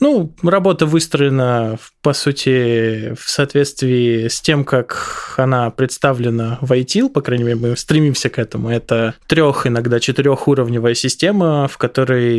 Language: Russian